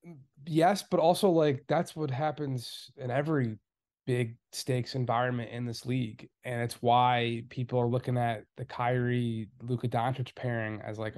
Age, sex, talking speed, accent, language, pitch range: 20-39, male, 155 wpm, American, English, 120-145 Hz